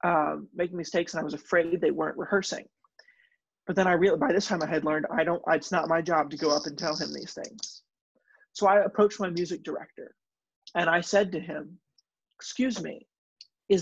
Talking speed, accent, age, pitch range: 205 wpm, American, 30-49, 165-205 Hz